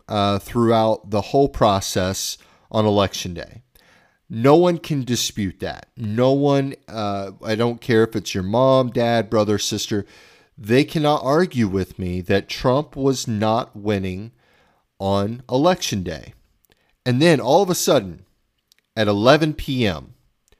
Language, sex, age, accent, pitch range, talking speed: English, male, 40-59, American, 100-130 Hz, 140 wpm